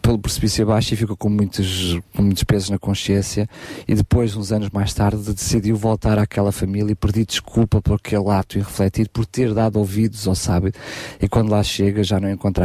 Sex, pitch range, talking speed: male, 100-120 Hz, 205 wpm